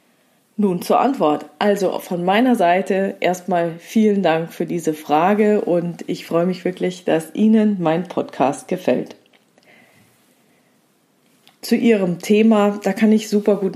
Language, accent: German, German